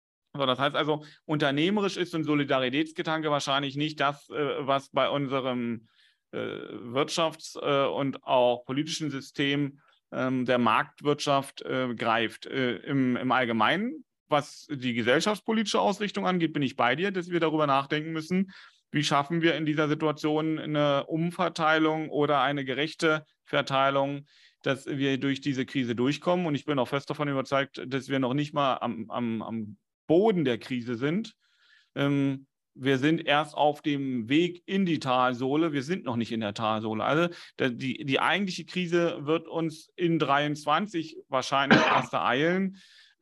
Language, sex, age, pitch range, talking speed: German, male, 40-59, 135-170 Hz, 140 wpm